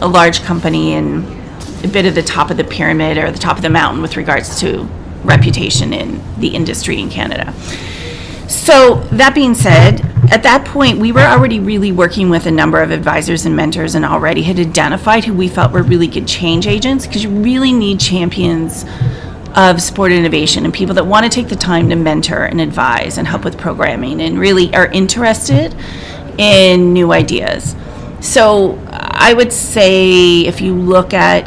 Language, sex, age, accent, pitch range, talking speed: English, female, 30-49, American, 155-195 Hz, 185 wpm